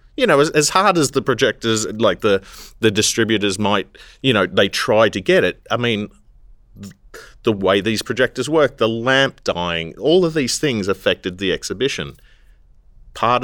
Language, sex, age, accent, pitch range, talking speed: English, male, 30-49, Australian, 95-125 Hz, 165 wpm